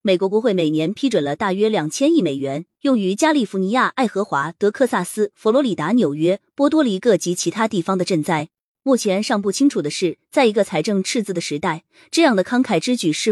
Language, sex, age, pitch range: Chinese, female, 20-39, 170-240 Hz